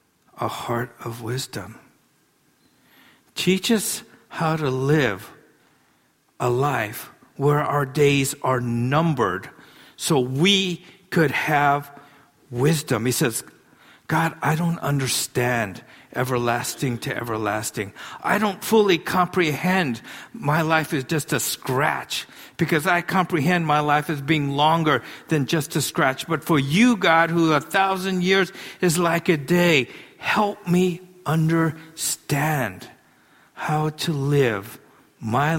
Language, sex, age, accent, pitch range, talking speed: English, male, 50-69, American, 125-160 Hz, 120 wpm